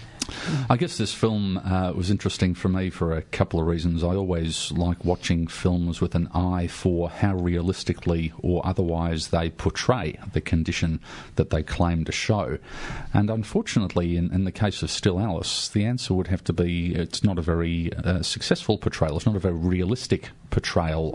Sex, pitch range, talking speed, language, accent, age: male, 85-100 Hz, 180 wpm, English, Australian, 40-59